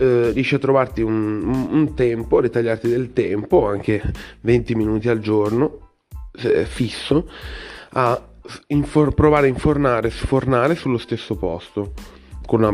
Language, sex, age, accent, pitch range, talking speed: Italian, male, 30-49, native, 95-115 Hz, 135 wpm